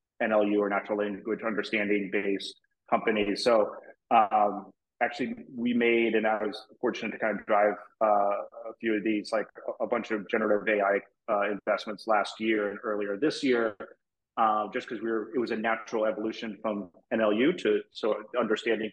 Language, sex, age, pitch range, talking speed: English, male, 30-49, 105-120 Hz, 175 wpm